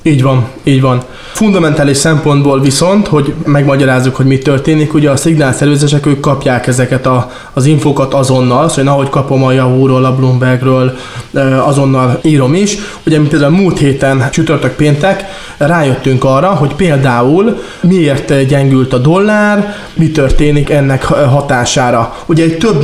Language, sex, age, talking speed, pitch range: Hungarian, male, 20-39, 140 wpm, 135-160 Hz